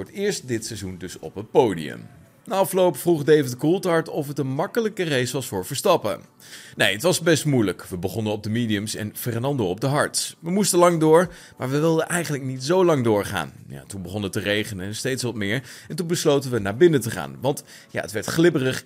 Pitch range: 110-160 Hz